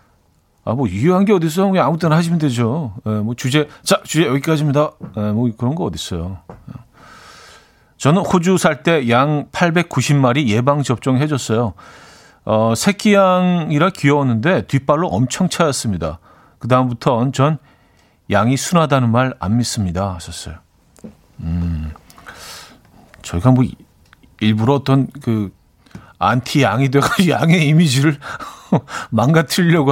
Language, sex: Korean, male